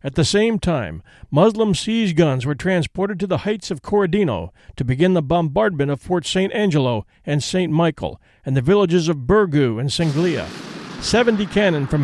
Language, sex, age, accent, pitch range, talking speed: English, male, 50-69, American, 145-195 Hz, 175 wpm